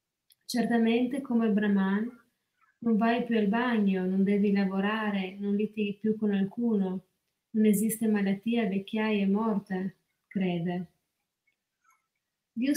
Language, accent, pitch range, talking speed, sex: Italian, native, 195-235 Hz, 115 wpm, female